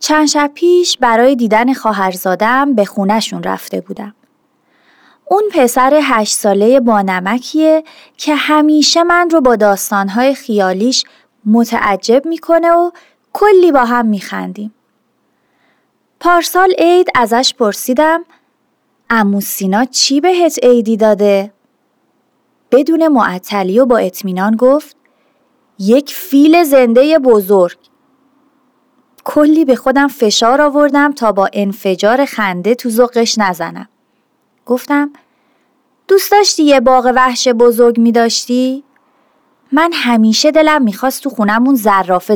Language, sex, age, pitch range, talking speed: Persian, female, 30-49, 215-295 Hz, 110 wpm